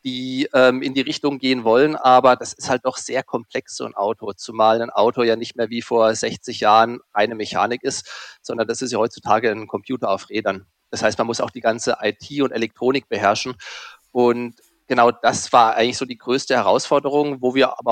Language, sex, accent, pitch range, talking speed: German, male, German, 120-145 Hz, 210 wpm